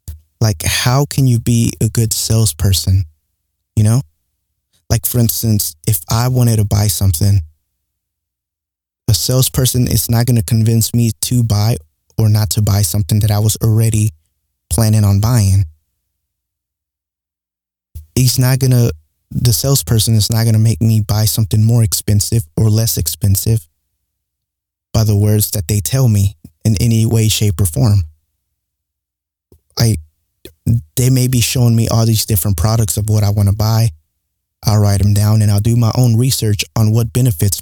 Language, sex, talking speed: English, male, 160 wpm